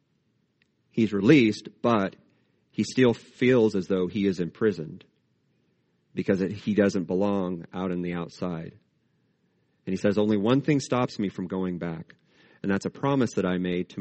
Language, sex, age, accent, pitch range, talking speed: English, male, 40-59, American, 95-120 Hz, 165 wpm